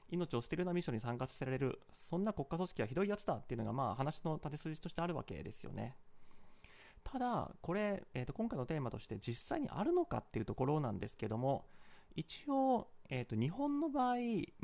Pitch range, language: 125-205 Hz, Japanese